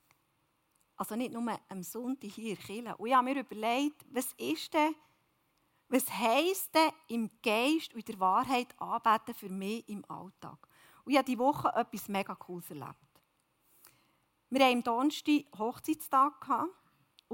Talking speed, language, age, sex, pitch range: 150 wpm, German, 40-59, female, 215-275 Hz